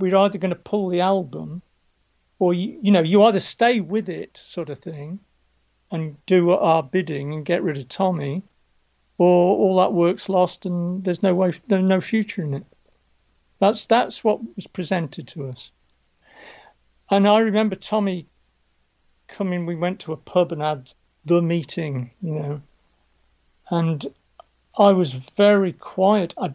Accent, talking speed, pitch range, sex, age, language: British, 160 wpm, 145-195 Hz, male, 50-69, English